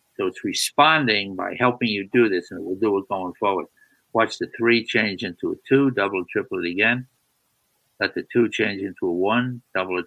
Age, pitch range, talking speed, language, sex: 60-79, 100-120 Hz, 215 wpm, English, male